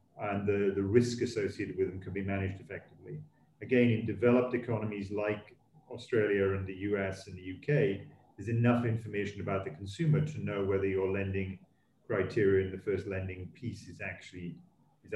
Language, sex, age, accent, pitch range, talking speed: English, male, 40-59, British, 100-130 Hz, 165 wpm